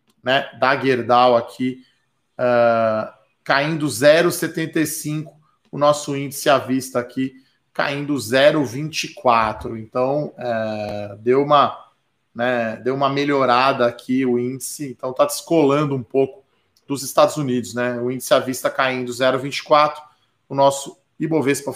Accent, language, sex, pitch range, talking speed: Brazilian, Portuguese, male, 125-150 Hz, 120 wpm